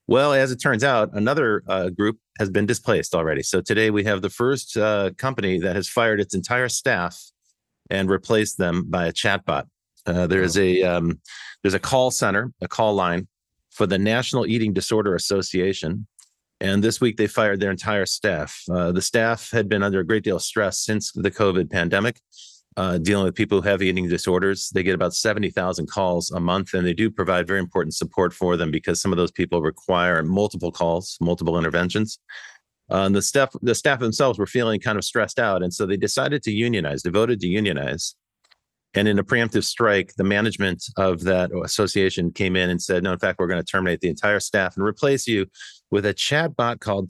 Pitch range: 90-110 Hz